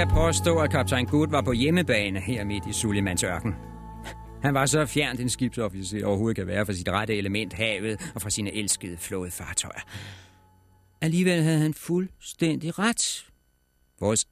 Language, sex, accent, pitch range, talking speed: Danish, male, native, 95-140 Hz, 170 wpm